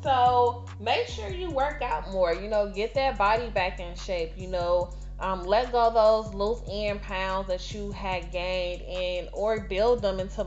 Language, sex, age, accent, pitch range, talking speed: English, female, 20-39, American, 185-230 Hz, 195 wpm